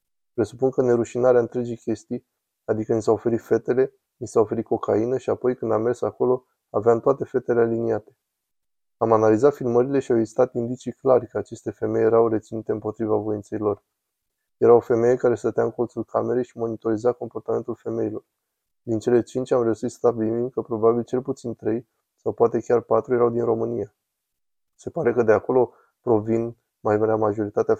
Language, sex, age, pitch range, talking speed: Romanian, male, 20-39, 110-120 Hz, 175 wpm